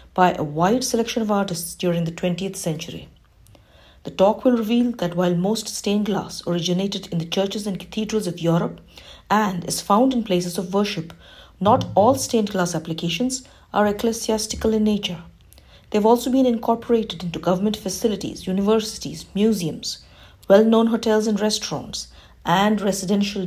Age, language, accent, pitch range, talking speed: 50-69, English, Indian, 175-215 Hz, 150 wpm